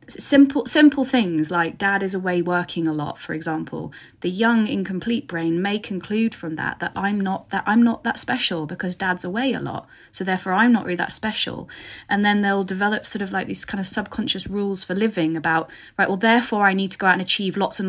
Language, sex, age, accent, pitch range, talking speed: English, female, 30-49, British, 170-205 Hz, 225 wpm